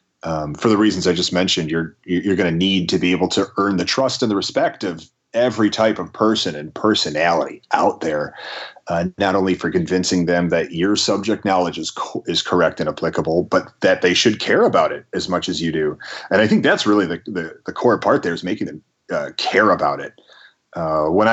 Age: 30-49